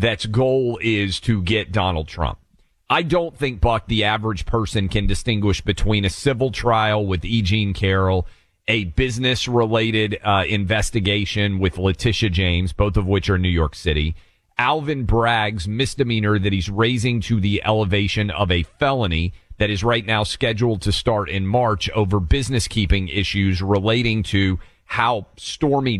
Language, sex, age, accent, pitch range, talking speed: English, male, 40-59, American, 95-120 Hz, 155 wpm